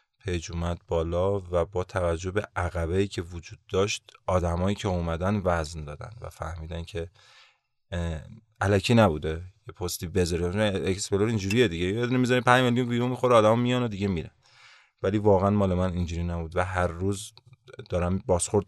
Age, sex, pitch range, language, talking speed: 30-49, male, 85-115 Hz, Persian, 150 wpm